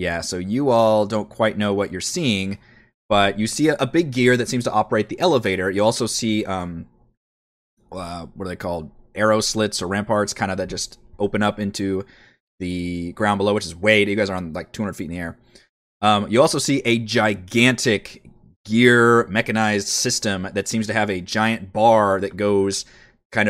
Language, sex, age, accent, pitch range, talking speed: English, male, 20-39, American, 95-115 Hz, 200 wpm